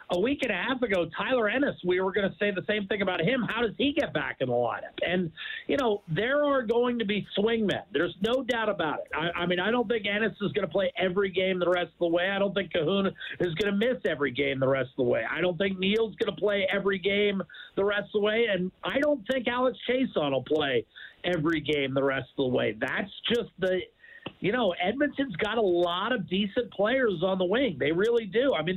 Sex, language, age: male, English, 50-69